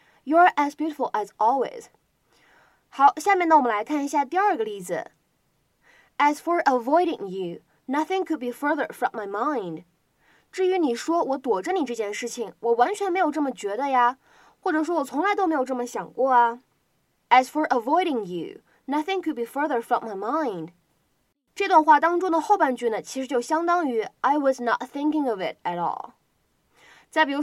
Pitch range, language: 245-335 Hz, Chinese